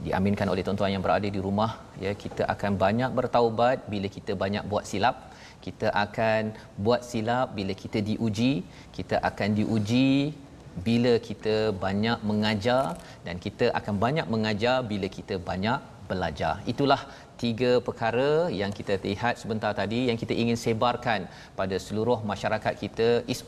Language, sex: Malayalam, male